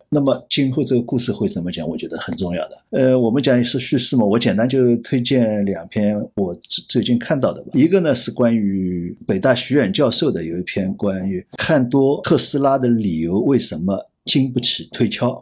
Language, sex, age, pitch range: Chinese, male, 50-69, 110-145 Hz